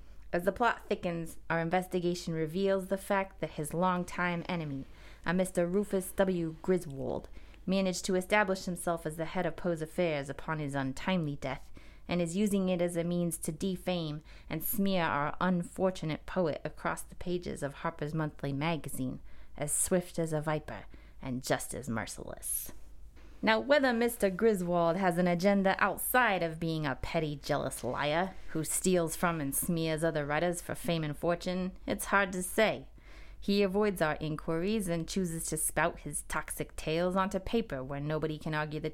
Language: English